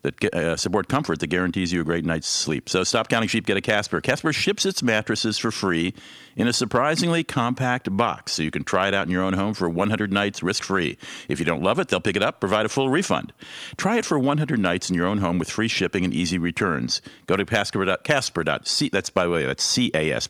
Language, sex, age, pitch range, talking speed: English, male, 50-69, 85-115 Hz, 245 wpm